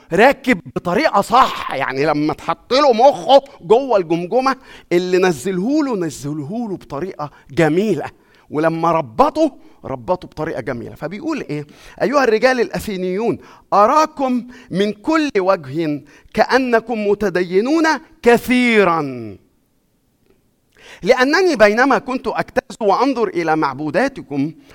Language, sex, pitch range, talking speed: Arabic, male, 170-240 Hz, 95 wpm